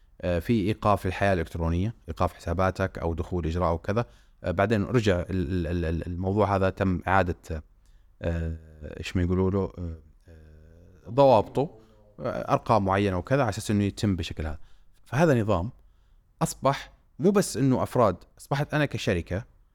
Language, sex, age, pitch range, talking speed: Arabic, male, 30-49, 90-120 Hz, 120 wpm